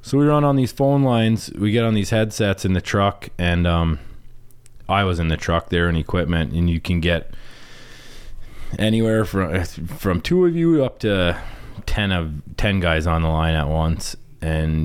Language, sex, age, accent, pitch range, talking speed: English, male, 20-39, American, 85-115 Hz, 190 wpm